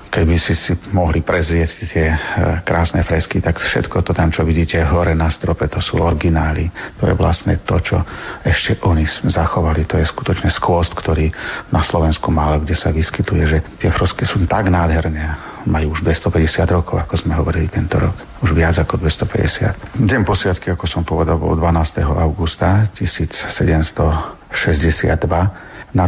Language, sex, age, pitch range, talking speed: Slovak, male, 40-59, 80-95 Hz, 160 wpm